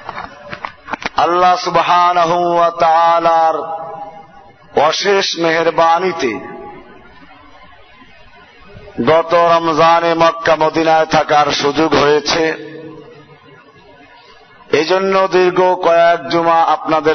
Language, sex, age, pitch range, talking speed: Bengali, male, 50-69, 160-195 Hz, 40 wpm